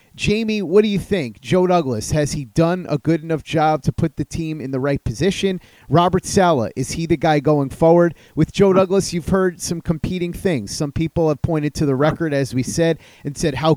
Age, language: 30-49, English